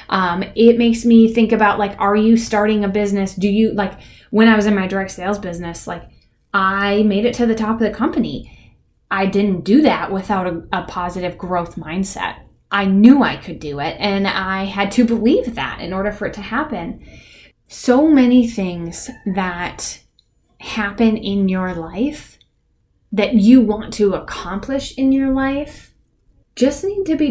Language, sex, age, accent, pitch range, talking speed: English, female, 10-29, American, 190-230 Hz, 180 wpm